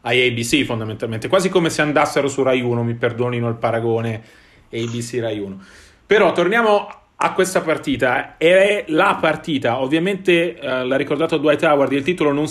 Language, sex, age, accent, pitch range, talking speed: Italian, male, 30-49, native, 125-160 Hz, 165 wpm